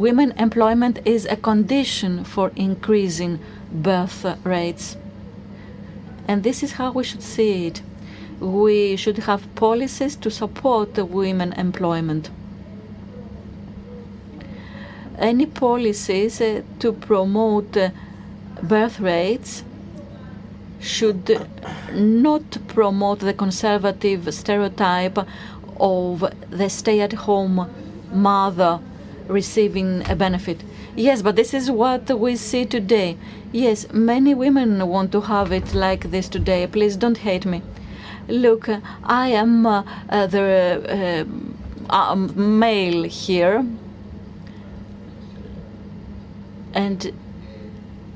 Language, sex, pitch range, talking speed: Greek, female, 175-220 Hz, 95 wpm